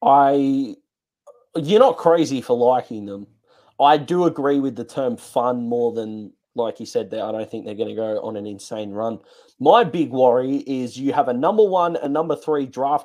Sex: male